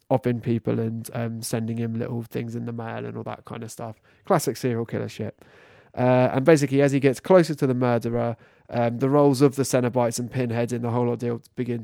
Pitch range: 115-135 Hz